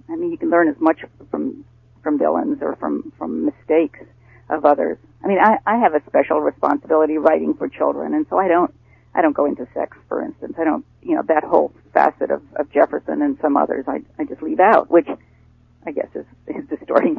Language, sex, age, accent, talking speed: English, female, 50-69, American, 215 wpm